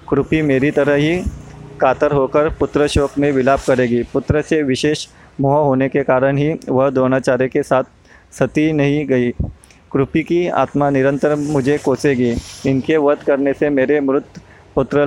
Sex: male